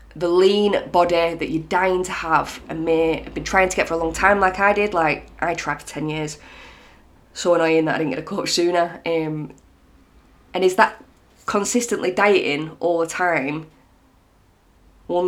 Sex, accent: female, British